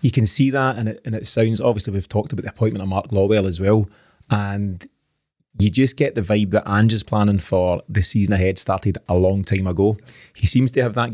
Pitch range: 100-115 Hz